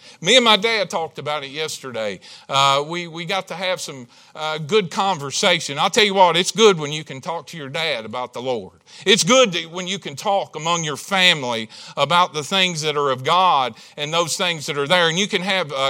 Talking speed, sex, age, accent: 235 wpm, male, 50-69, American